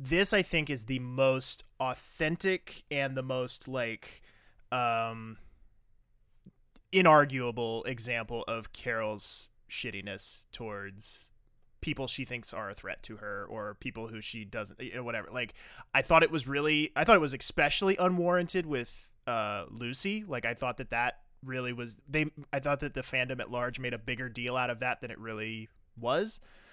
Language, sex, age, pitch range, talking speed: English, male, 20-39, 120-150 Hz, 170 wpm